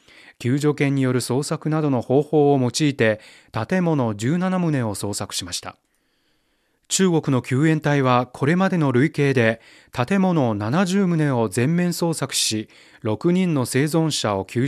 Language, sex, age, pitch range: Japanese, male, 30-49, 115-155 Hz